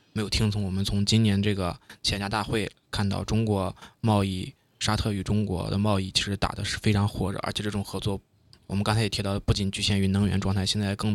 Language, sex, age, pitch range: Chinese, male, 20-39, 100-110 Hz